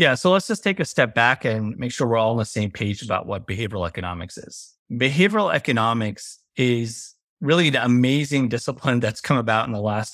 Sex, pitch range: male, 110-150 Hz